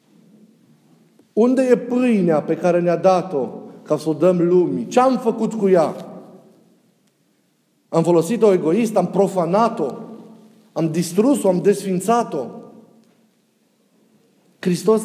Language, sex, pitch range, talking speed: Romanian, male, 180-230 Hz, 110 wpm